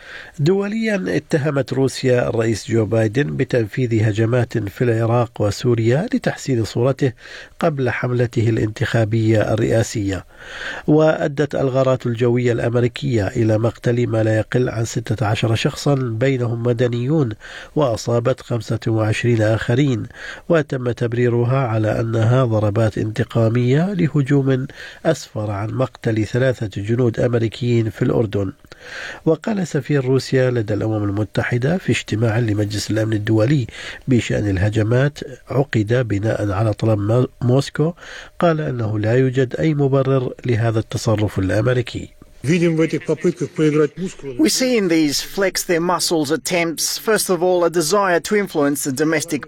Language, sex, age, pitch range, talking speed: Arabic, male, 50-69, 115-150 Hz, 110 wpm